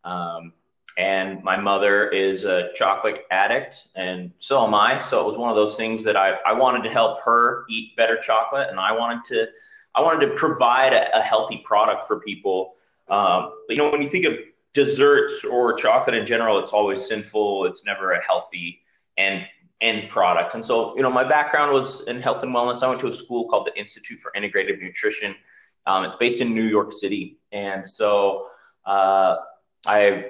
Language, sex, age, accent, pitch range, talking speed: English, male, 30-49, American, 100-135 Hz, 195 wpm